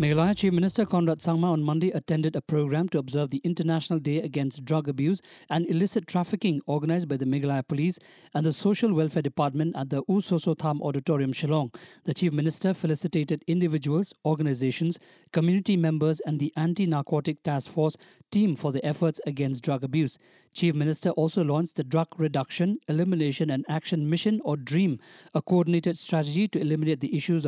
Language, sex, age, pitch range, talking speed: English, male, 50-69, 150-175 Hz, 170 wpm